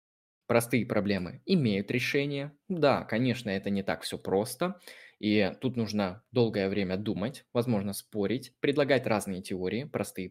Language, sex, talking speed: Russian, male, 135 wpm